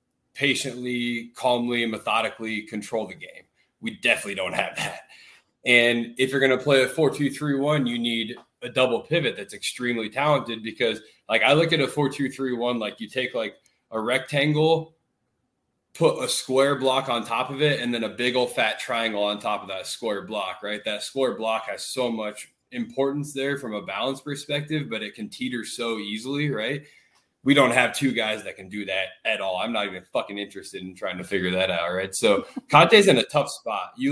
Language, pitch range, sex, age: English, 110-140 Hz, male, 20-39